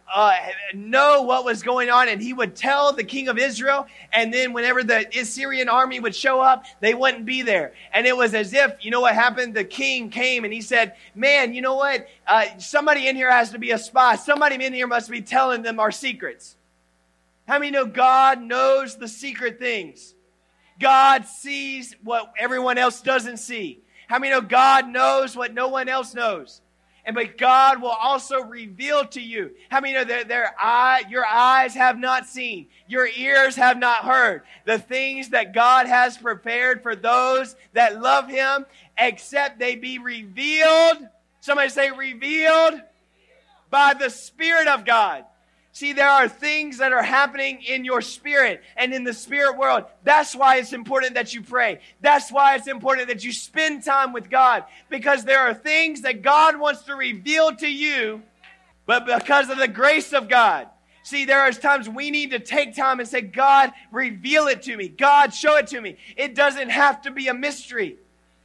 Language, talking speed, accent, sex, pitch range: English, 190 wpm, American, male, 240-275 Hz